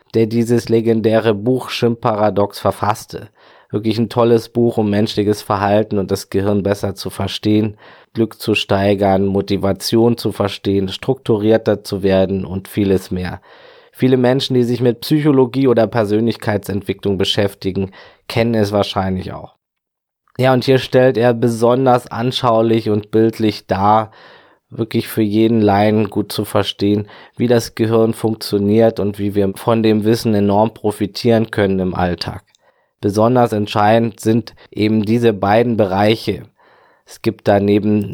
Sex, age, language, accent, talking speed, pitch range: male, 20-39, German, German, 135 wpm, 100-115 Hz